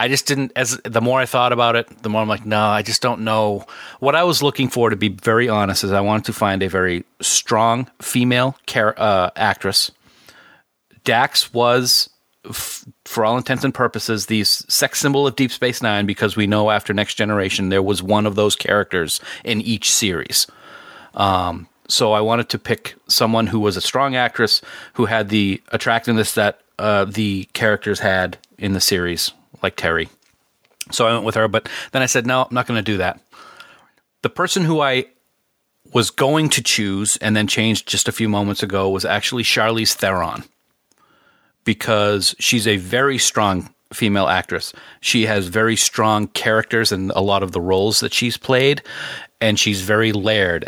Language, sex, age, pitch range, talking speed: English, male, 40-59, 100-120 Hz, 185 wpm